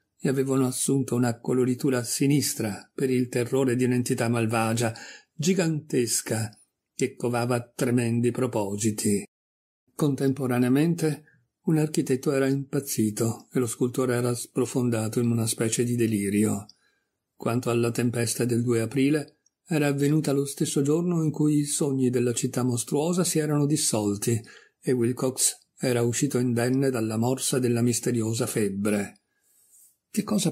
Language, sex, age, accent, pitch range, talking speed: Italian, male, 50-69, native, 120-140 Hz, 130 wpm